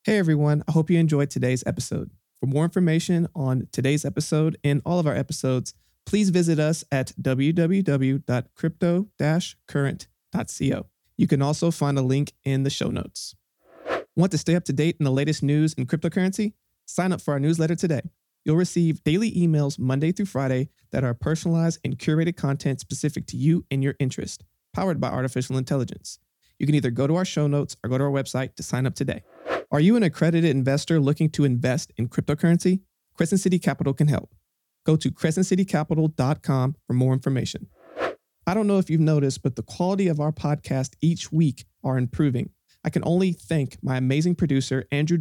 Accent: American